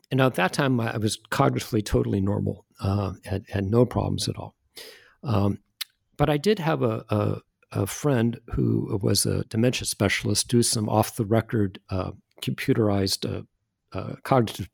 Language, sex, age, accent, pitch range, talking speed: English, male, 50-69, American, 100-130 Hz, 160 wpm